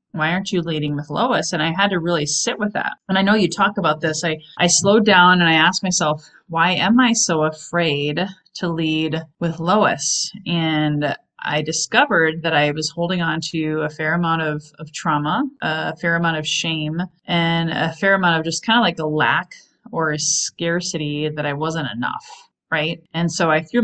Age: 30-49